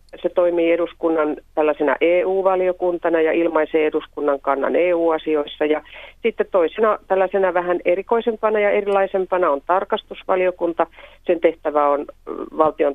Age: 40-59